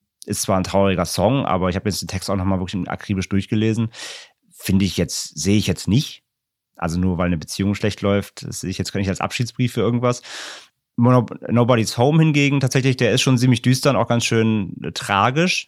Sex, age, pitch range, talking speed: male, 30-49, 95-120 Hz, 210 wpm